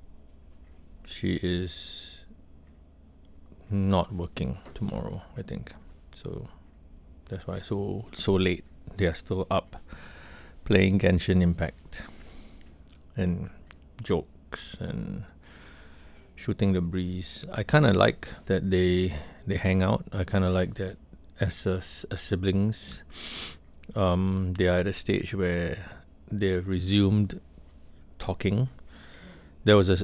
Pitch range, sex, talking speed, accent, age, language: 75-95 Hz, male, 115 wpm, Malaysian, 30-49, English